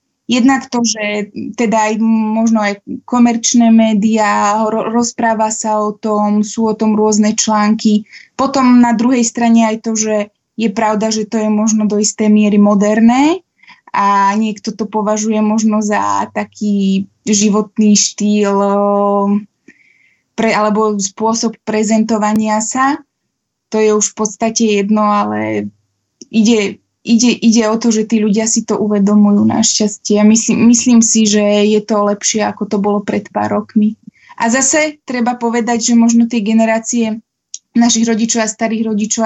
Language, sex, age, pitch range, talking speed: Slovak, female, 20-39, 210-230 Hz, 145 wpm